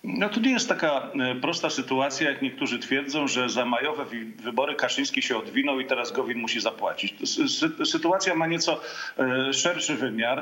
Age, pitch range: 40-59, 135-165 Hz